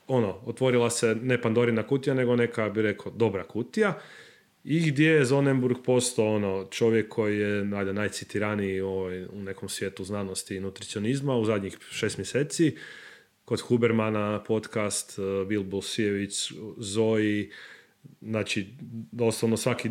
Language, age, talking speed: Croatian, 30-49, 125 wpm